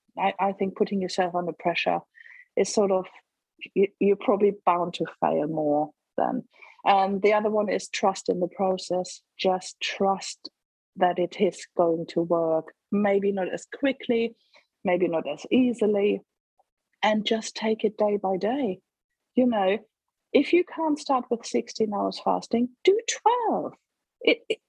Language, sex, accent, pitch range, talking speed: English, female, British, 185-255 Hz, 155 wpm